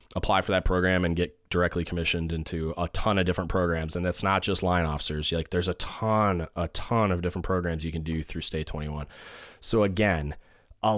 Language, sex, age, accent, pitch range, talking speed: English, male, 20-39, American, 80-95 Hz, 210 wpm